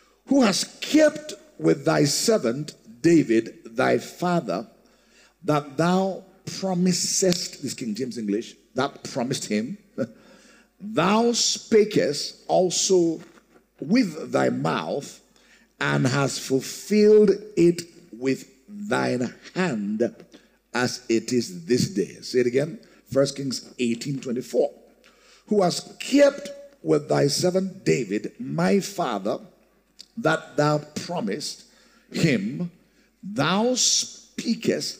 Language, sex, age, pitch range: English, male, 50-69, 135-210 Hz